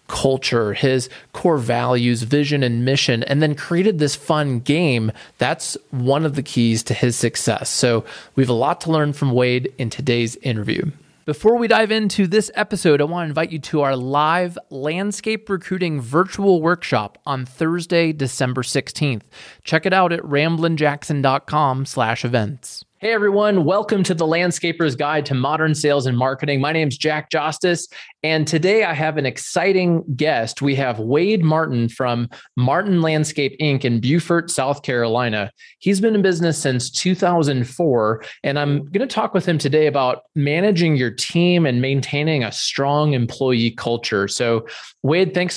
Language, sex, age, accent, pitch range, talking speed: English, male, 30-49, American, 130-170 Hz, 165 wpm